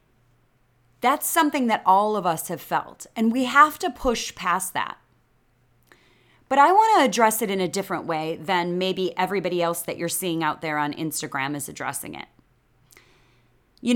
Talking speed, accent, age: 170 wpm, American, 30-49